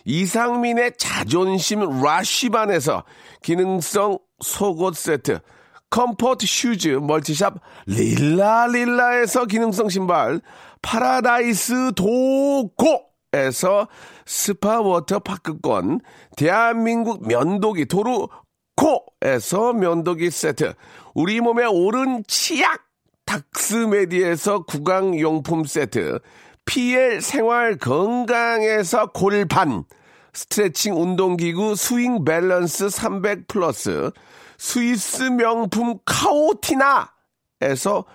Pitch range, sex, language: 185-240 Hz, male, Korean